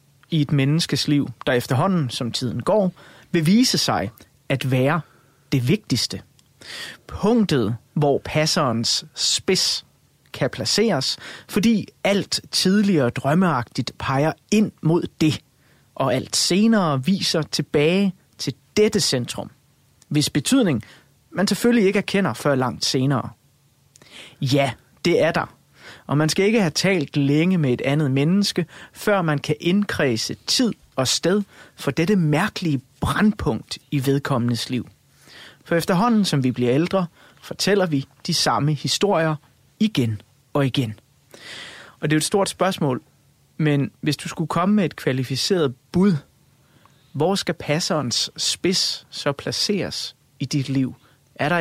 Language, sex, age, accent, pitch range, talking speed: Danish, male, 30-49, native, 135-180 Hz, 135 wpm